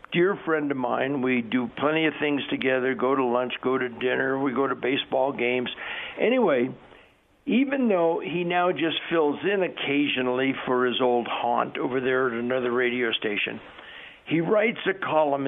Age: 60-79